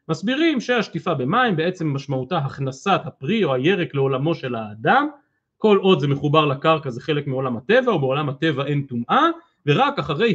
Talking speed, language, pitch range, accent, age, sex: 155 wpm, Hebrew, 140-230 Hz, native, 40-59, male